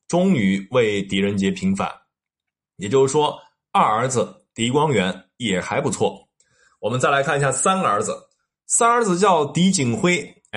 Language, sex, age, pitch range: Chinese, male, 20-39, 135-200 Hz